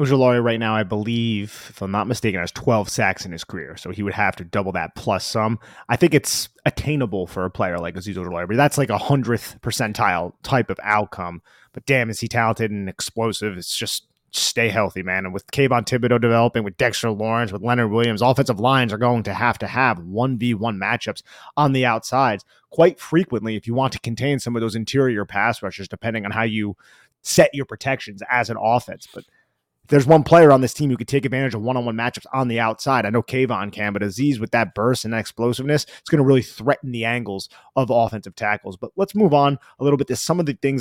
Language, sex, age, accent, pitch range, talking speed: English, male, 30-49, American, 110-135 Hz, 220 wpm